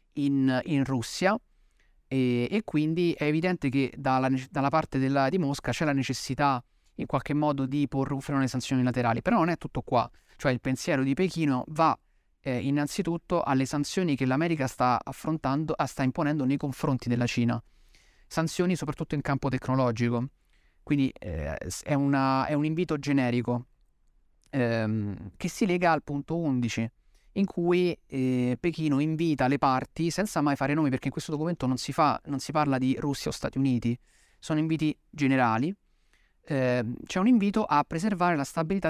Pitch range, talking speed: 125-155 Hz, 170 wpm